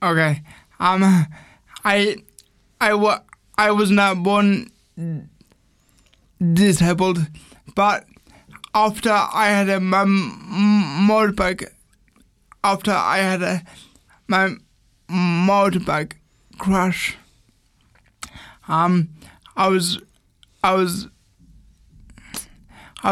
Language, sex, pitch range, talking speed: English, male, 175-205 Hz, 75 wpm